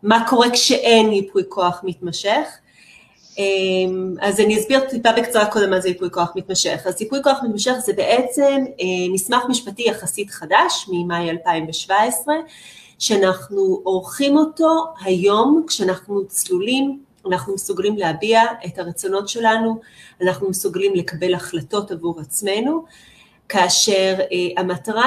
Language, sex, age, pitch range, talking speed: Hebrew, female, 30-49, 180-225 Hz, 120 wpm